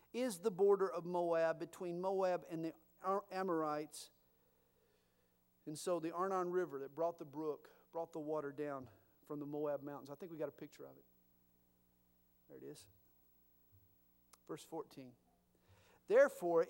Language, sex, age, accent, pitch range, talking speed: English, male, 50-69, American, 135-195 Hz, 145 wpm